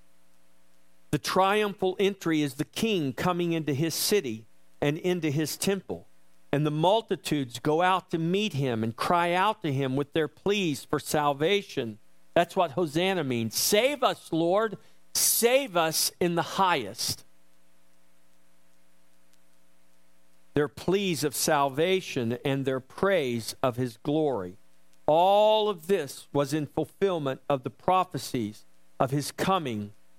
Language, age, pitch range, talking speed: English, 50-69, 115-185 Hz, 130 wpm